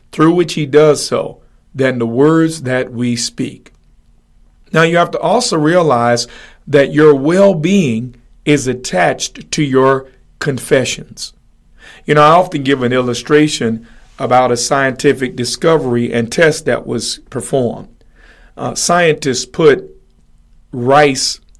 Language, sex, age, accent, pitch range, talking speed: English, male, 50-69, American, 125-160 Hz, 125 wpm